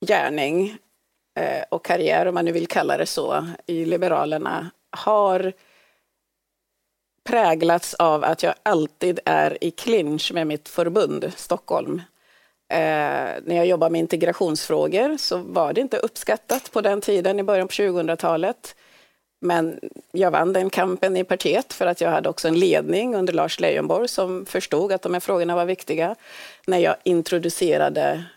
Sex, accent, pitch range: female, native, 170-210 Hz